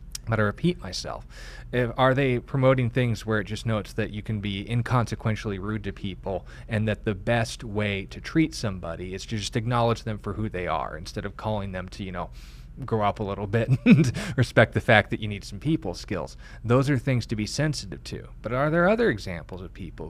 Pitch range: 100-120 Hz